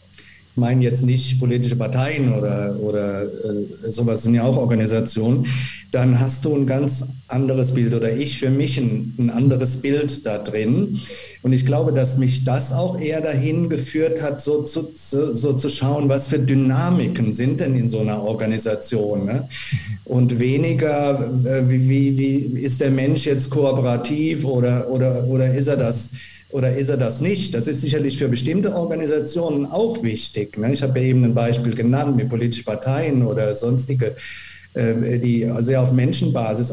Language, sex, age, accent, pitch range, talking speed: German, male, 50-69, German, 120-140 Hz, 165 wpm